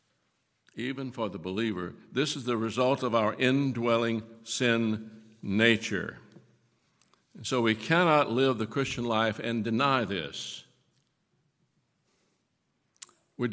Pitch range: 110-130 Hz